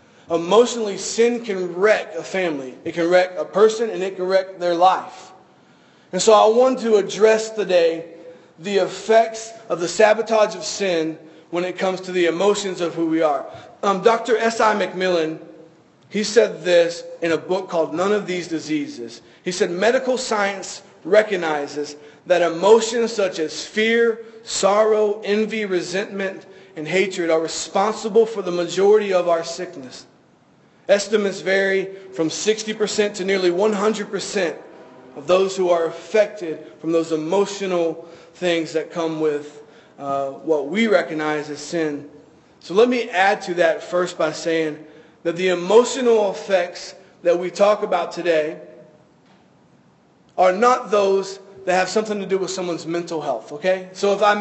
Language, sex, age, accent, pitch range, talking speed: English, male, 40-59, American, 165-210 Hz, 150 wpm